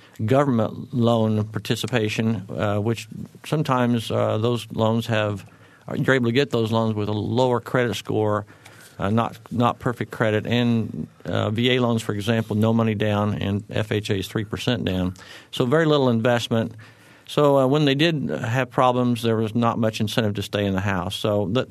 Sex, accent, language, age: male, American, English, 50-69